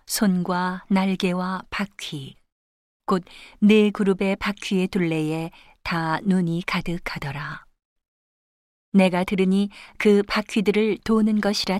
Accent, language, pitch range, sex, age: native, Korean, 175-205 Hz, female, 40-59